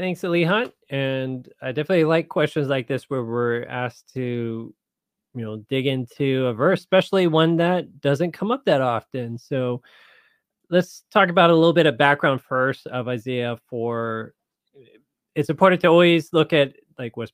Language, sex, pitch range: English, male, 125-170 Hz